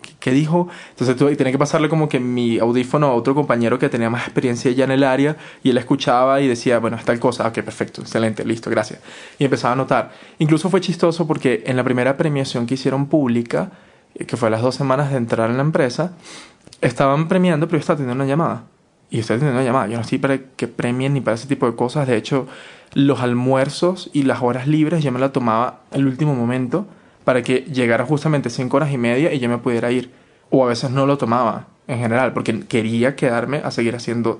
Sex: male